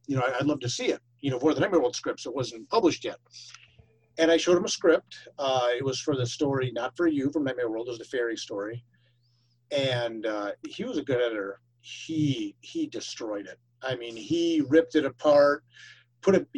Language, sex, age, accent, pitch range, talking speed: English, male, 40-59, American, 120-165 Hz, 215 wpm